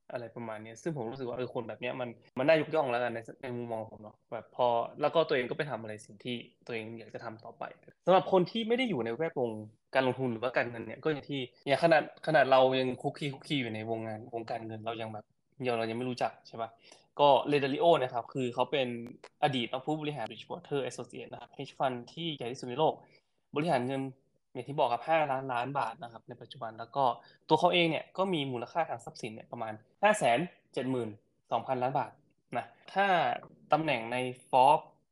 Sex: male